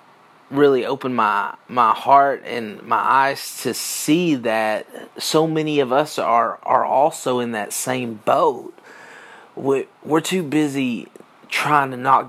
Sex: male